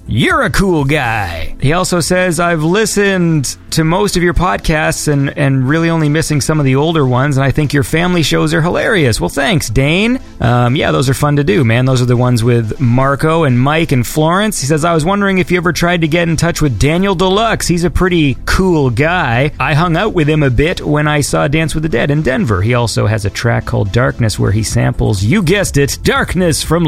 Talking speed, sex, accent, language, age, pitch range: 235 wpm, male, American, English, 30-49, 115-165 Hz